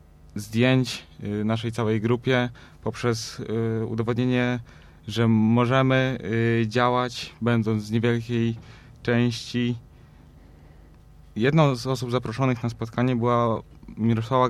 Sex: male